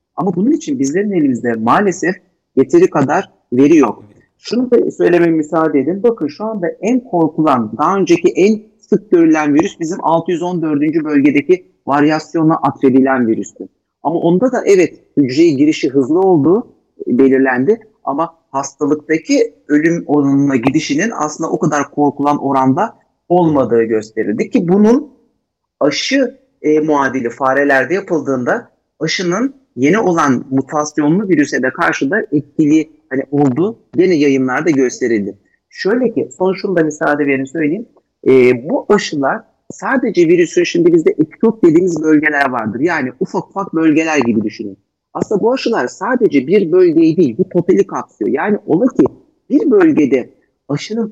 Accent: native